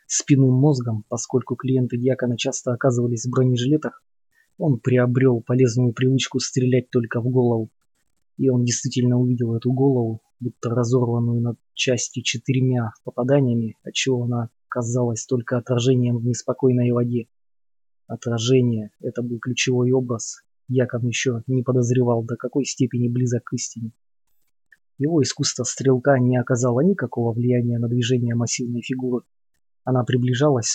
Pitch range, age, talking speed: 120-130 Hz, 20-39, 130 wpm